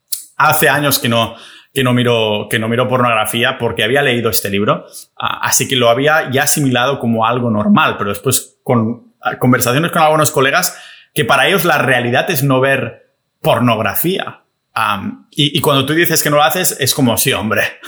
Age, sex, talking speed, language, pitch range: 30-49, male, 185 wpm, Spanish, 115-145 Hz